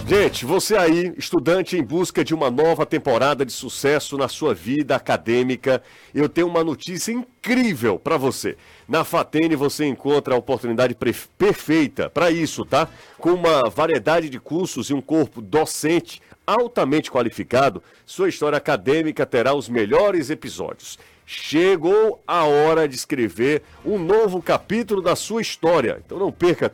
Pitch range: 130-170 Hz